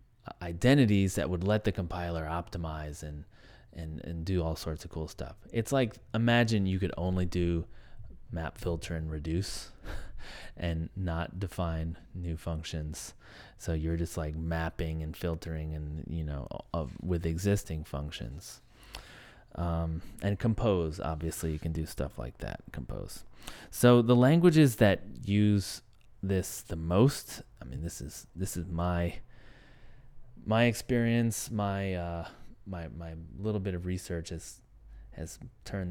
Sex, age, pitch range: male, 30-49, 80-105 Hz